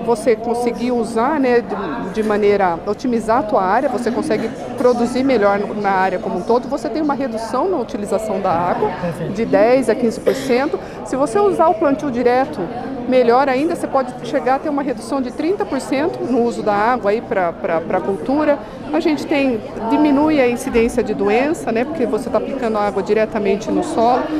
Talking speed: 175 wpm